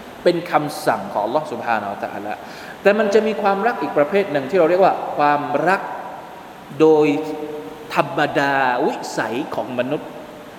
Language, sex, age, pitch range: Thai, male, 20-39, 170-240 Hz